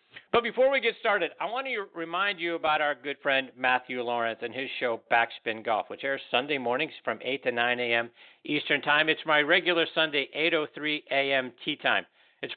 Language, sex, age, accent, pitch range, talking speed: English, male, 50-69, American, 115-145 Hz, 190 wpm